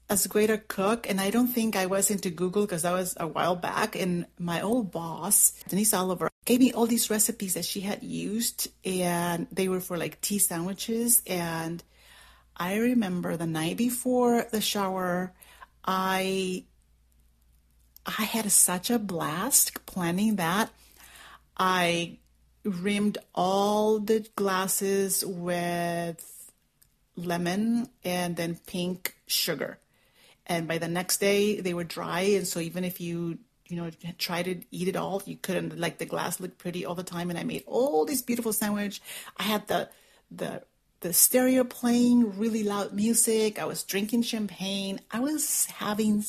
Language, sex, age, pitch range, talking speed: English, female, 40-59, 175-220 Hz, 155 wpm